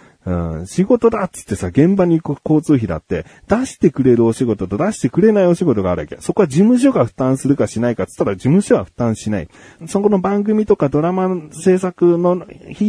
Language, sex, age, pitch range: Japanese, male, 40-59, 100-160 Hz